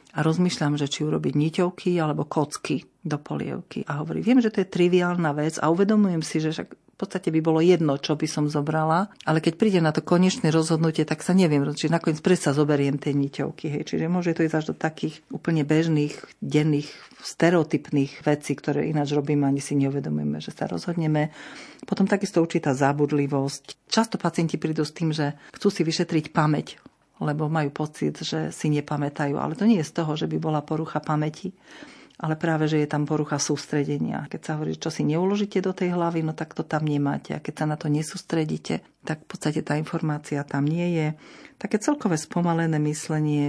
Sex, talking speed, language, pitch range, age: female, 190 wpm, Slovak, 145-170 Hz, 50-69